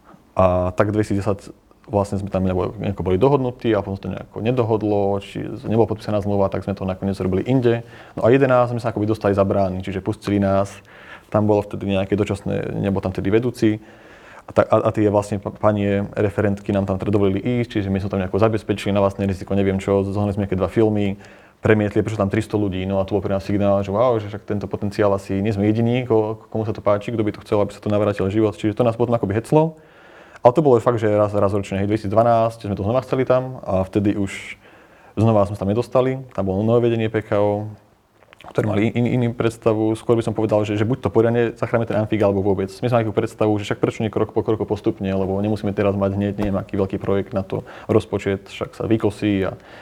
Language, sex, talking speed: Slovak, male, 220 wpm